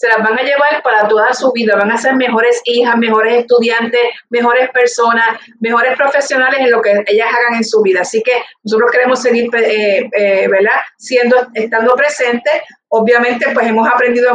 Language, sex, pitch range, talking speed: Spanish, female, 210-245 Hz, 180 wpm